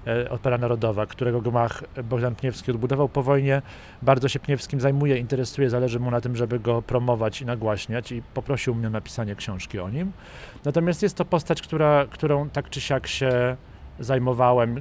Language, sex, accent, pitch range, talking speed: Polish, male, native, 115-140 Hz, 170 wpm